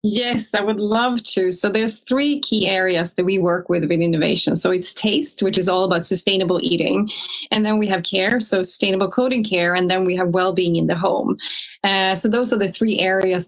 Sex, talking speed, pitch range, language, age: female, 220 wpm, 185-215 Hz, English, 20-39